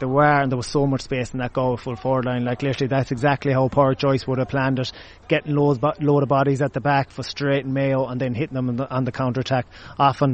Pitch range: 125-140 Hz